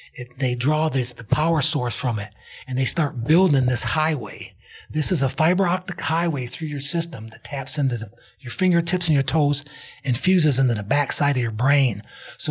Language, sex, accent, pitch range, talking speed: English, male, American, 135-175 Hz, 200 wpm